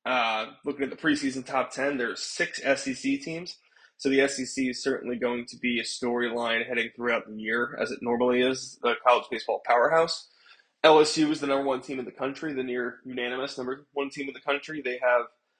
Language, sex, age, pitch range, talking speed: English, male, 20-39, 120-140 Hz, 210 wpm